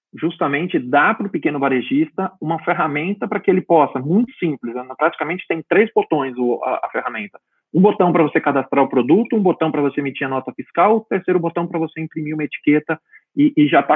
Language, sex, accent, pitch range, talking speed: Portuguese, male, Brazilian, 135-180 Hz, 200 wpm